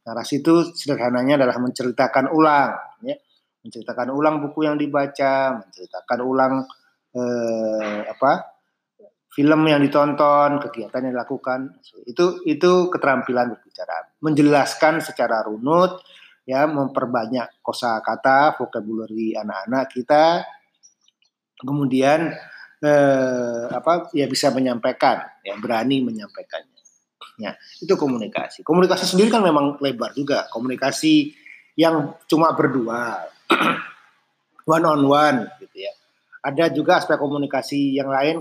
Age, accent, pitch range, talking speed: 30-49, native, 130-160 Hz, 110 wpm